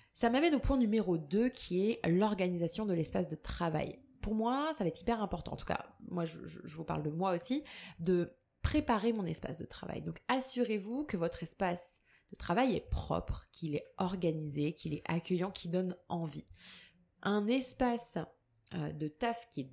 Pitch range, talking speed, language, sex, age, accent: 165-210 Hz, 185 wpm, French, female, 20-39, French